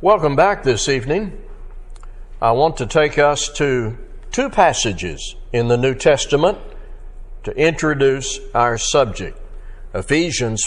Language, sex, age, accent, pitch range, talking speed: English, male, 60-79, American, 120-165 Hz, 120 wpm